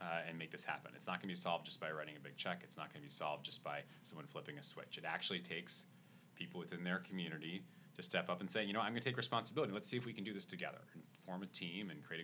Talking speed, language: 305 wpm, English